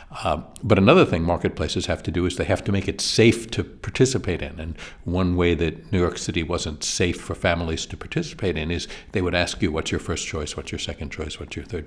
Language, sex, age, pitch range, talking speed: English, male, 60-79, 80-95 Hz, 245 wpm